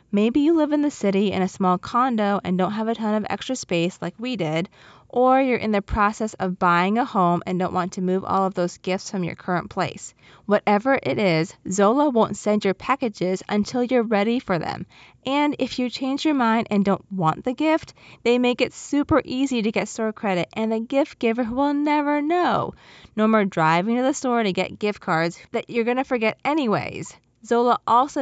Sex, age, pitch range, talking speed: female, 20-39, 185-245 Hz, 215 wpm